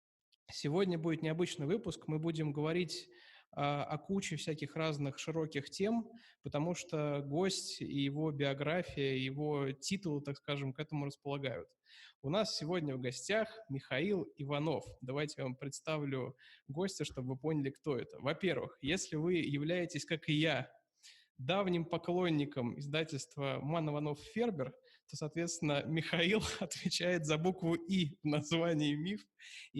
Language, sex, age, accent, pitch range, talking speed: Russian, male, 20-39, native, 140-170 Hz, 135 wpm